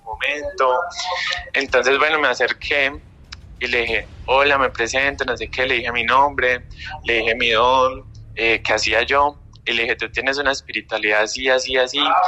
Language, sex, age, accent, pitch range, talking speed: Spanish, male, 20-39, Colombian, 110-130 Hz, 175 wpm